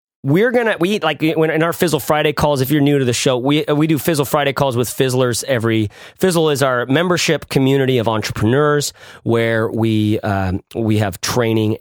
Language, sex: English, male